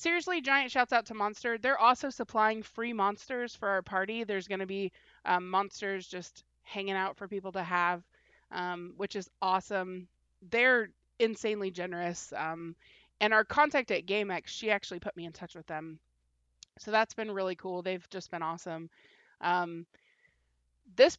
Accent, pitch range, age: American, 175-220 Hz, 20-39